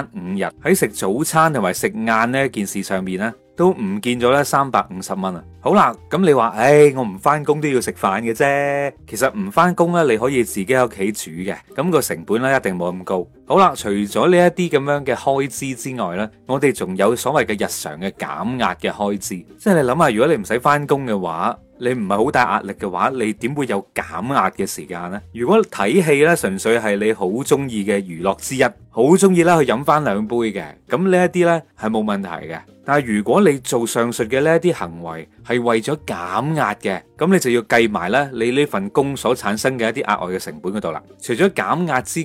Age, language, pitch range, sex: 30-49, Chinese, 105-160 Hz, male